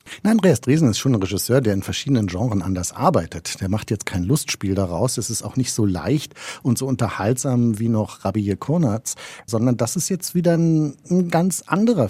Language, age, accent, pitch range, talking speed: German, 50-69, German, 110-135 Hz, 205 wpm